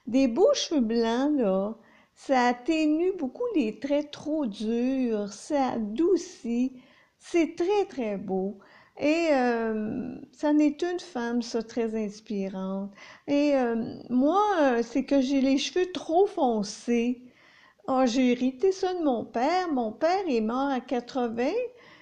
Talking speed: 140 wpm